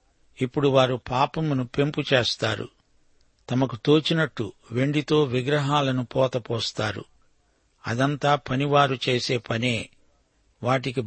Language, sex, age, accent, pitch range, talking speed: Telugu, male, 60-79, native, 125-145 Hz, 80 wpm